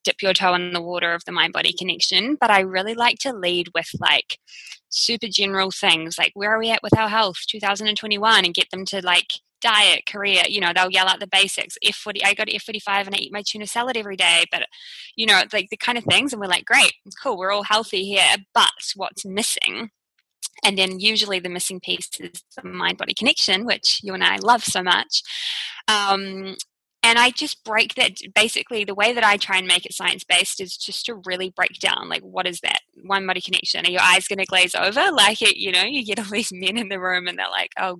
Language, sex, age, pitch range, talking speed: English, female, 20-39, 180-215 Hz, 225 wpm